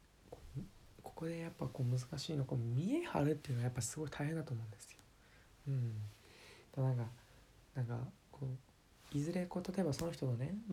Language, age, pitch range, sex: Japanese, 20-39, 125-165 Hz, male